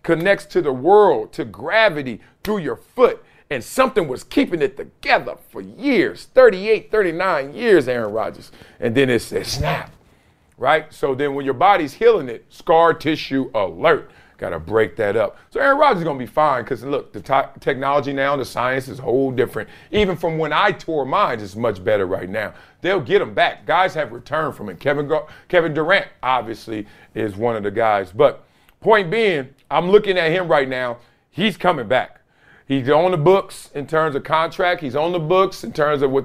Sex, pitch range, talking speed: male, 130-195 Hz, 195 wpm